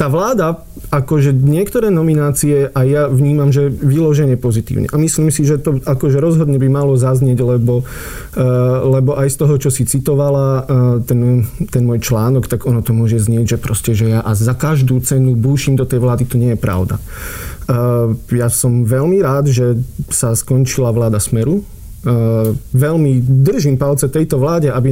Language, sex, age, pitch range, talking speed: Slovak, male, 40-59, 120-140 Hz, 165 wpm